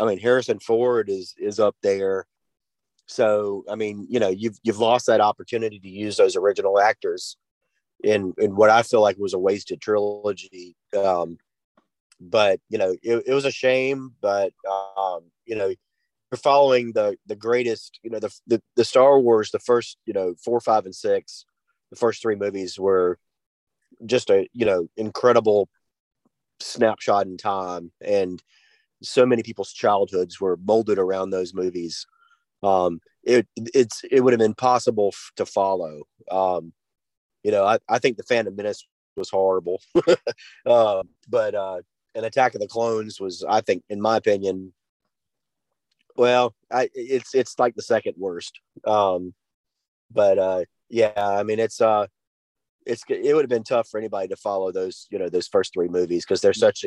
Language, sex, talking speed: English, male, 170 wpm